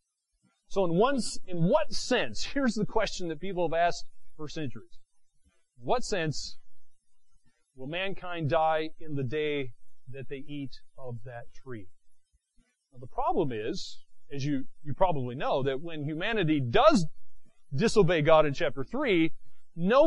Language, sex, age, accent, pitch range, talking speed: English, male, 40-59, American, 130-190 Hz, 145 wpm